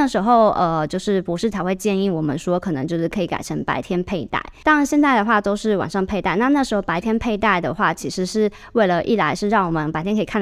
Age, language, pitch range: 20-39, Chinese, 175-225 Hz